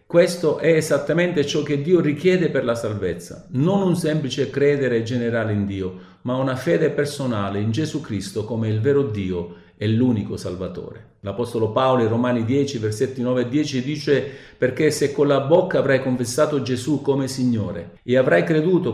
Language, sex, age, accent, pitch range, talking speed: Italian, male, 50-69, native, 110-140 Hz, 170 wpm